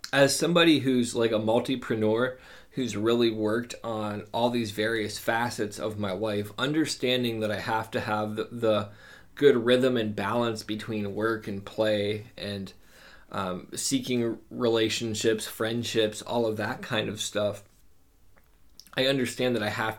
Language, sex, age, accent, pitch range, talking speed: English, male, 20-39, American, 105-125 Hz, 145 wpm